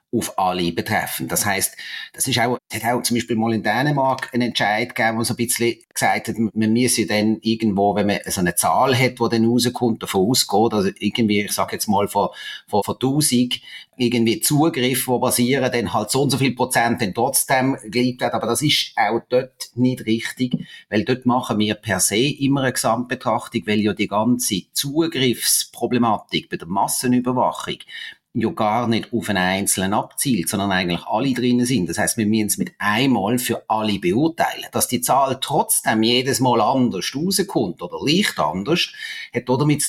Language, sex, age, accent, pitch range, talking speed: German, male, 30-49, Austrian, 110-125 Hz, 180 wpm